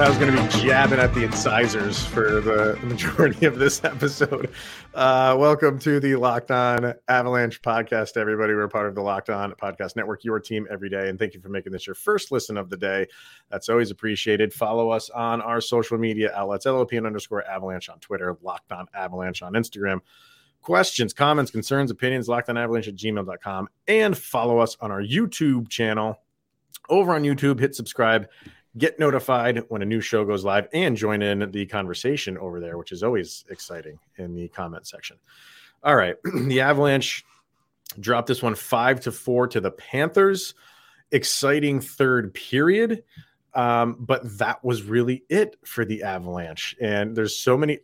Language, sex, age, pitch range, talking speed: English, male, 30-49, 105-135 Hz, 175 wpm